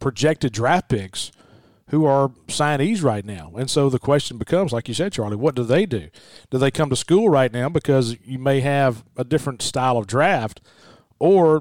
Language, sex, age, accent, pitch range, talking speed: English, male, 40-59, American, 120-150 Hz, 195 wpm